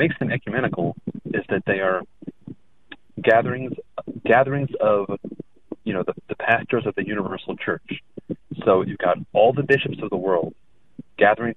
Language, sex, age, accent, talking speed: English, male, 30-49, American, 150 wpm